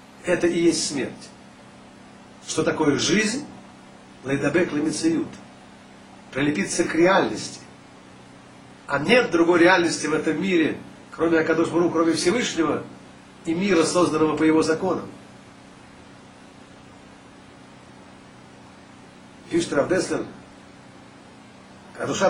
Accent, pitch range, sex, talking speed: native, 160-205 Hz, male, 85 wpm